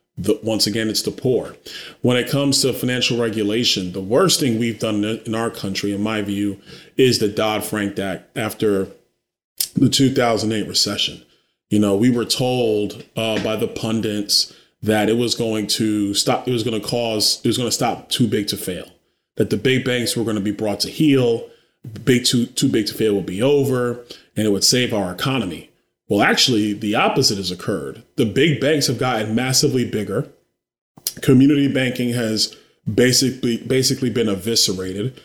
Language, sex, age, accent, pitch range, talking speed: English, male, 30-49, American, 105-125 Hz, 180 wpm